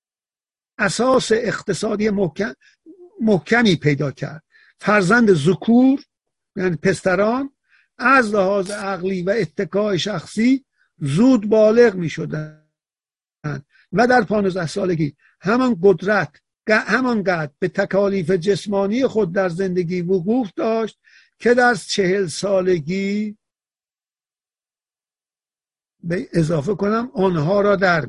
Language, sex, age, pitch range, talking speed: Persian, male, 50-69, 175-220 Hz, 95 wpm